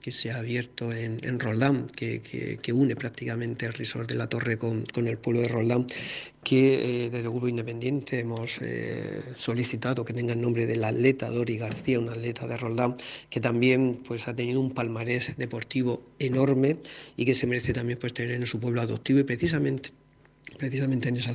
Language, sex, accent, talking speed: Spanish, male, Spanish, 195 wpm